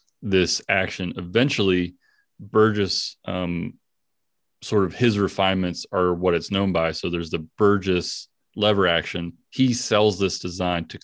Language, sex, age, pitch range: English, male, 30-49, 90-105 Hz